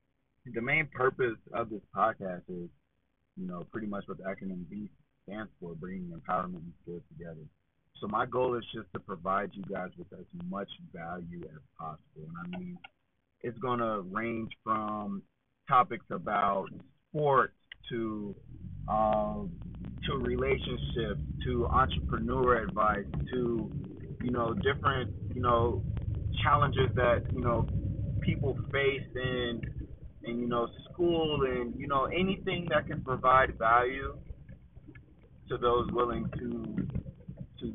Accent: American